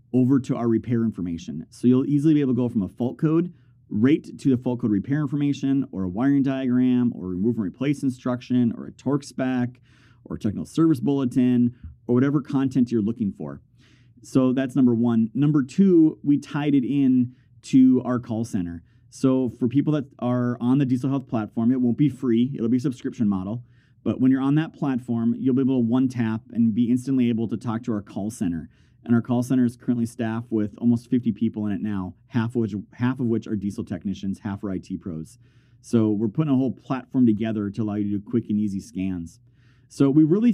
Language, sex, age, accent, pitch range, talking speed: English, male, 30-49, American, 115-135 Hz, 220 wpm